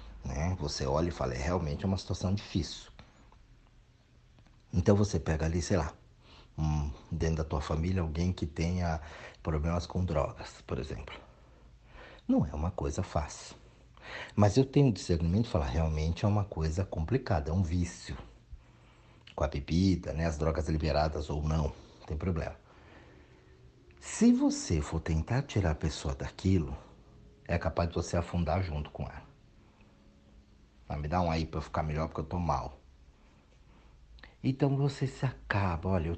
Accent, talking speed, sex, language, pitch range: Brazilian, 155 wpm, male, Portuguese, 75-95 Hz